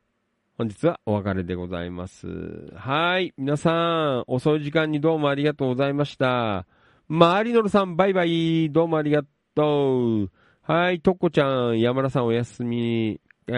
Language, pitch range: Japanese, 110-160 Hz